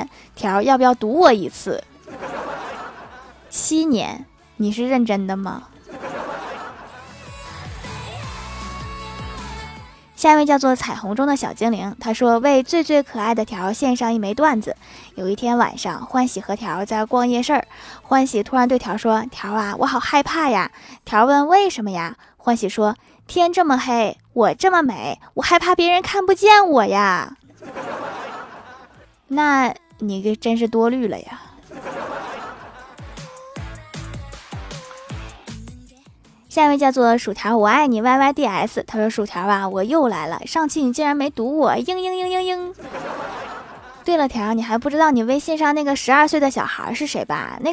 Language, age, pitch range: Chinese, 10-29, 215-295 Hz